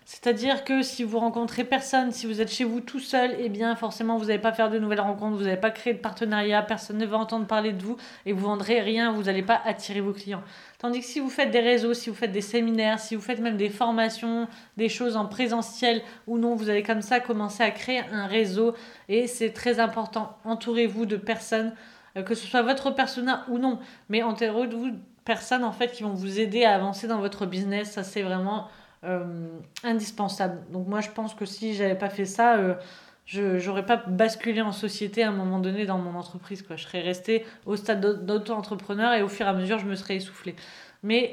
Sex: female